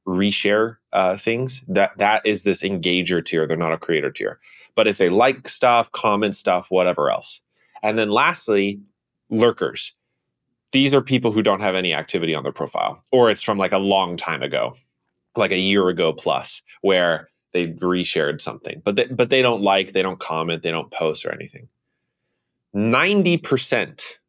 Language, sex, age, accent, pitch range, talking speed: English, male, 20-39, American, 90-115 Hz, 175 wpm